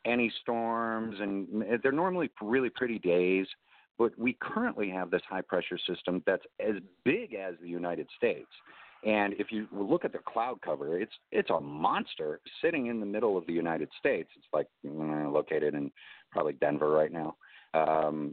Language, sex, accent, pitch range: English, male, American, 85-110 Hz